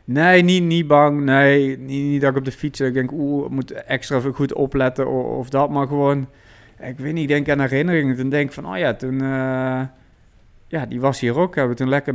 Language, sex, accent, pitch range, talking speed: Dutch, male, Dutch, 115-135 Hz, 245 wpm